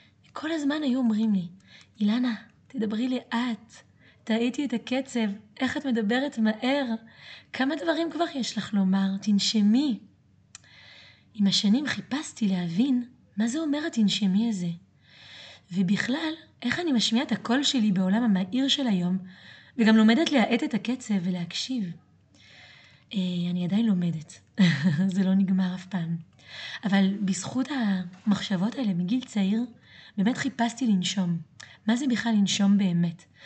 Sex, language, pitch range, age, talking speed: female, Hebrew, 180-235 Hz, 20-39, 125 wpm